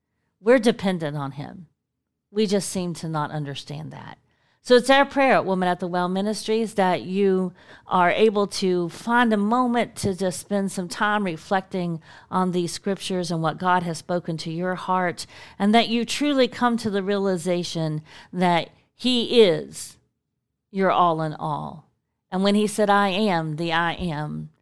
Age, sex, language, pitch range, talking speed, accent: 40-59, female, English, 165-210 Hz, 170 wpm, American